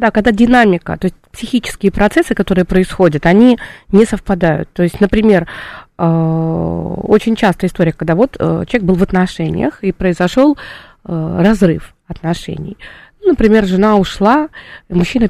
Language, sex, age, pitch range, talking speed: Russian, female, 20-39, 175-220 Hz, 125 wpm